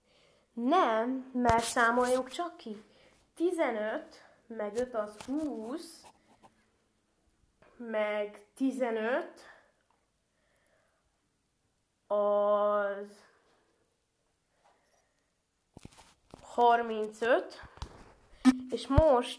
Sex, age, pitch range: female, 20-39, 220-270 Hz